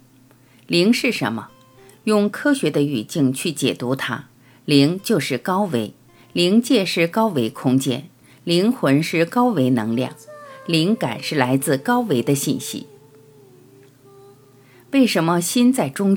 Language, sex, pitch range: Chinese, female, 130-195 Hz